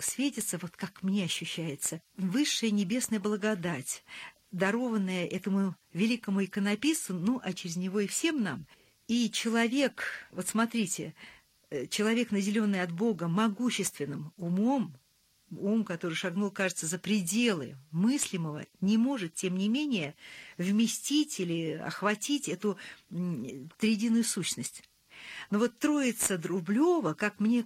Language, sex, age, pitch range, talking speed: Russian, female, 50-69, 175-230 Hz, 115 wpm